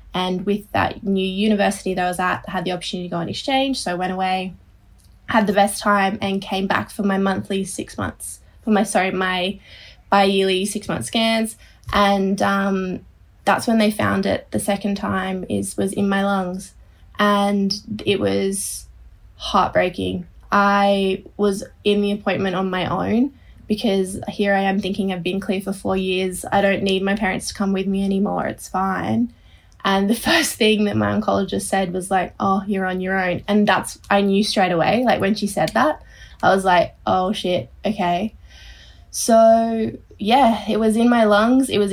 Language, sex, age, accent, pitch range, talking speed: English, female, 20-39, Australian, 185-205 Hz, 190 wpm